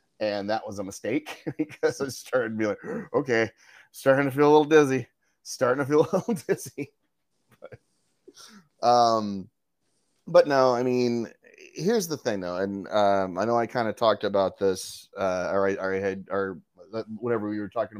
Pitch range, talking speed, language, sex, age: 100-150 Hz, 185 wpm, English, male, 30-49